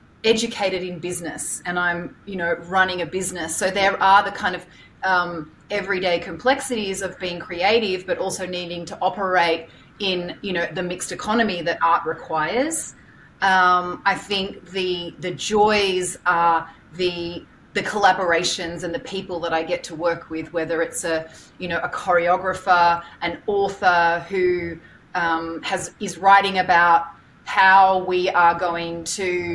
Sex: female